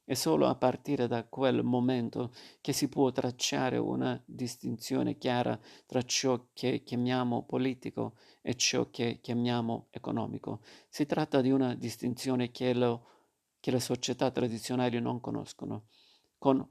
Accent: native